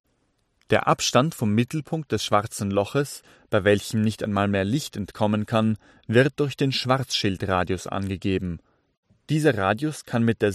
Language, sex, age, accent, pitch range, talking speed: German, male, 30-49, German, 100-125 Hz, 140 wpm